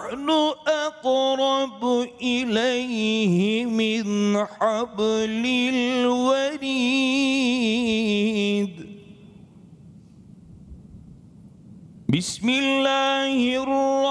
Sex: male